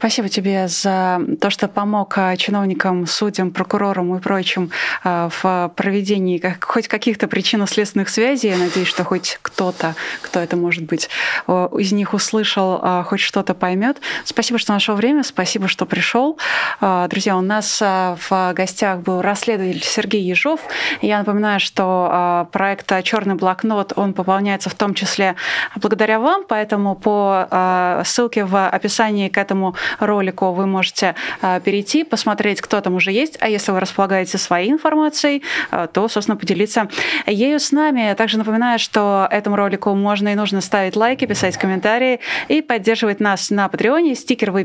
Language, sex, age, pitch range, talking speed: Russian, female, 20-39, 185-220 Hz, 150 wpm